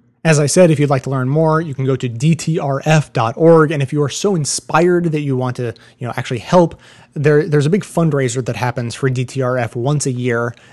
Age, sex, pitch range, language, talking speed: 30-49, male, 120-150 Hz, English, 225 wpm